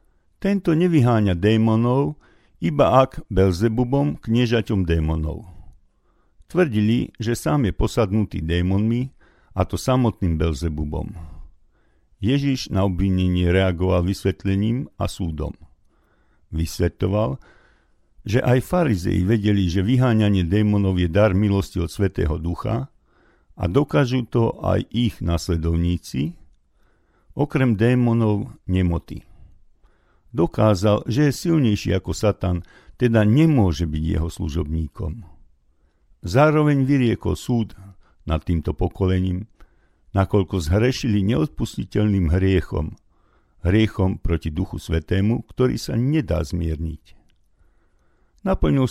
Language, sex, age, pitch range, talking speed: Slovak, male, 50-69, 85-115 Hz, 95 wpm